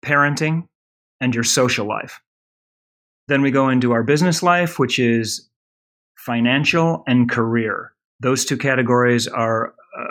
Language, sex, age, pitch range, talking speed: English, male, 30-49, 115-135 Hz, 130 wpm